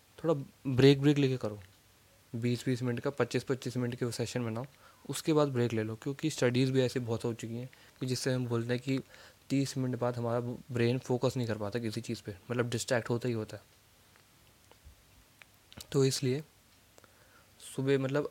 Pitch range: 115-135 Hz